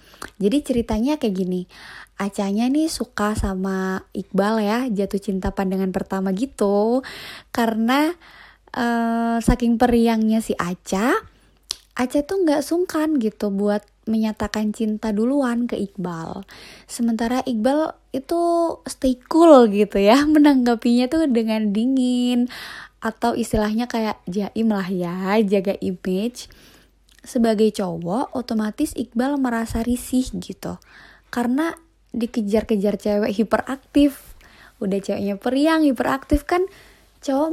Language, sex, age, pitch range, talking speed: Indonesian, female, 20-39, 205-265 Hz, 110 wpm